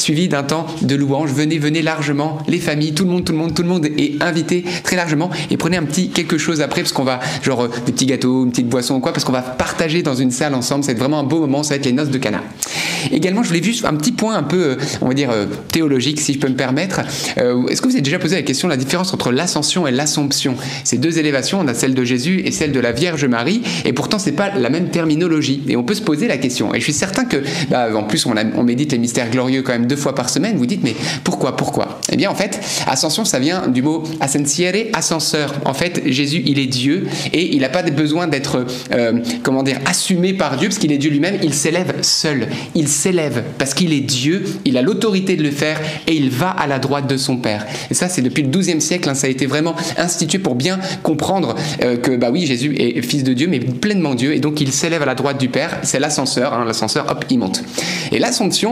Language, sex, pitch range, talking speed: French, male, 135-170 Hz, 260 wpm